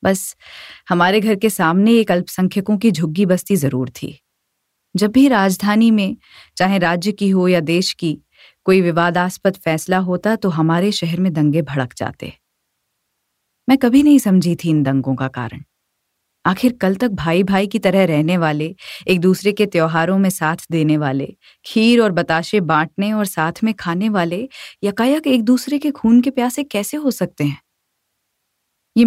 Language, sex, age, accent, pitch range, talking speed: Hindi, female, 30-49, native, 165-225 Hz, 165 wpm